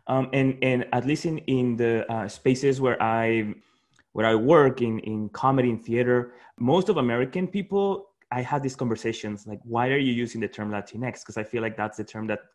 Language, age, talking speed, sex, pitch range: English, 20-39, 215 wpm, male, 110-135 Hz